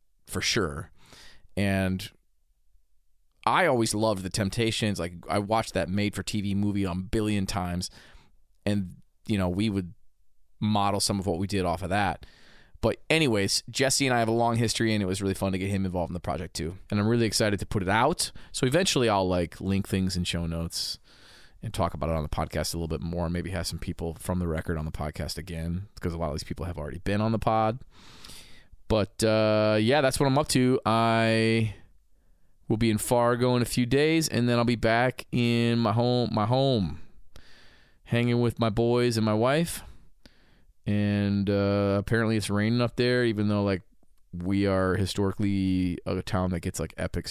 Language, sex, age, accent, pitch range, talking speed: English, male, 20-39, American, 85-110 Hz, 205 wpm